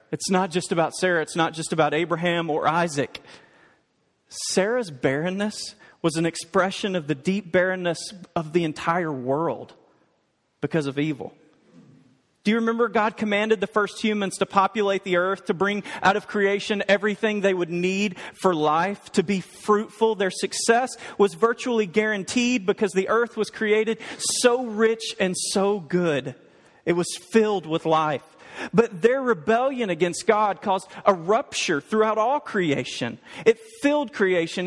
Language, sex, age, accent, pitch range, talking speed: English, male, 40-59, American, 170-215 Hz, 150 wpm